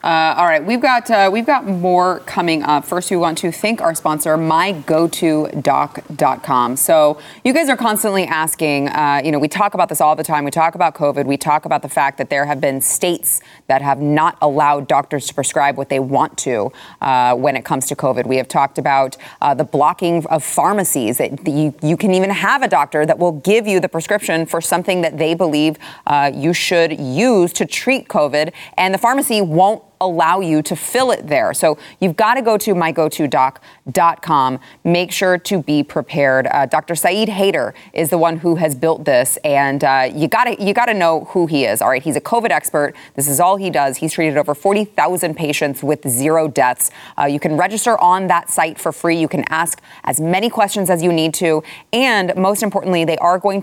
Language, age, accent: English, 20-39, American